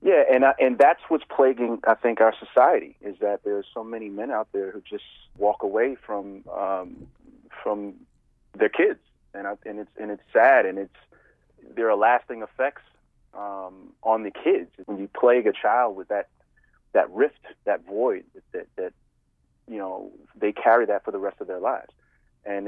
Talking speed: 190 wpm